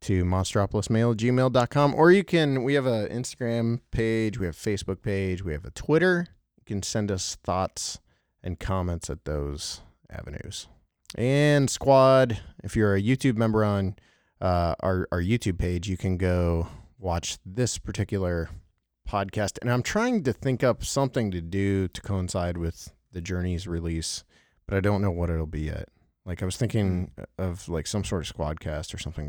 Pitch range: 90-110 Hz